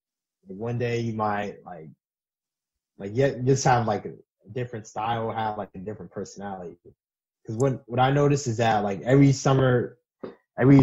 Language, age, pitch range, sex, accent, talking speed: English, 20-39, 105-130 Hz, male, American, 165 wpm